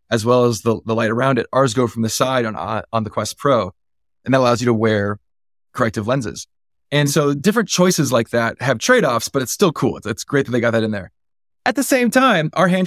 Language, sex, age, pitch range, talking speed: English, male, 20-39, 115-155 Hz, 250 wpm